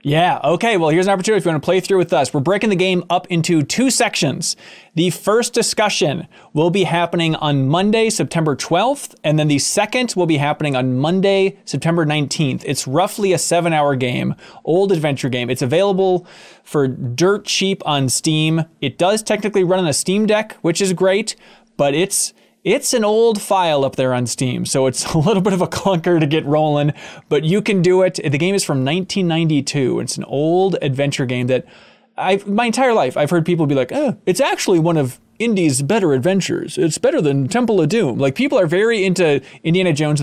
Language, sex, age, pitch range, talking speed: English, male, 20-39, 140-190 Hz, 205 wpm